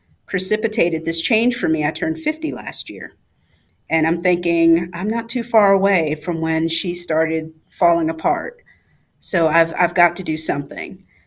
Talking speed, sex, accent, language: 165 wpm, female, American, English